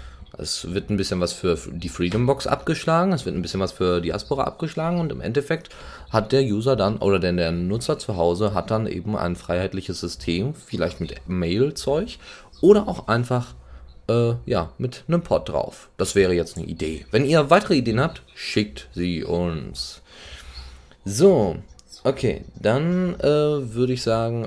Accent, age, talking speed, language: German, 30-49, 175 wpm, German